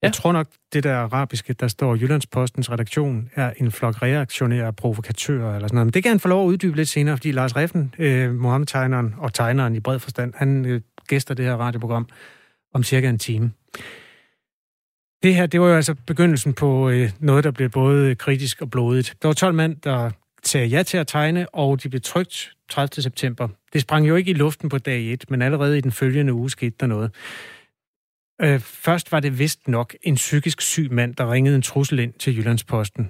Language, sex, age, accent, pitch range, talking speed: Danish, male, 30-49, native, 120-145 Hz, 210 wpm